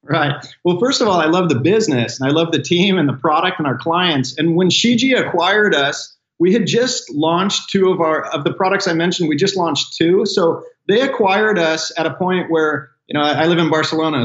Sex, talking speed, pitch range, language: male, 235 wpm, 145-180 Hz, English